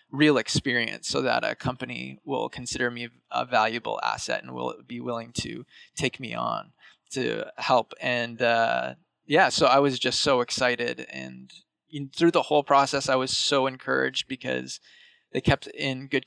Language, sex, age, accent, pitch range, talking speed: English, male, 20-39, American, 120-140 Hz, 170 wpm